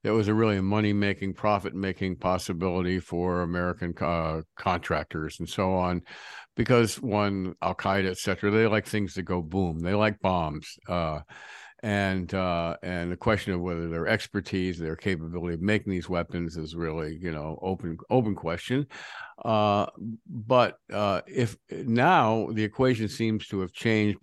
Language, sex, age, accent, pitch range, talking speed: English, male, 50-69, American, 85-110 Hz, 155 wpm